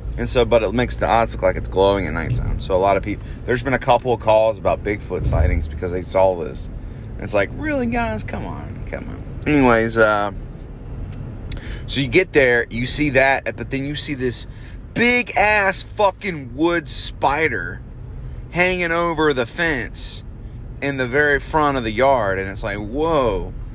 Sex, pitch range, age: male, 105-135 Hz, 30-49